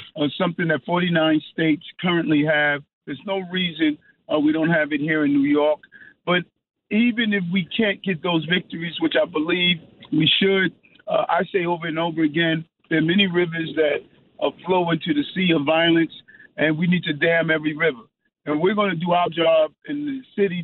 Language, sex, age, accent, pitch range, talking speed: English, male, 50-69, American, 150-175 Hz, 195 wpm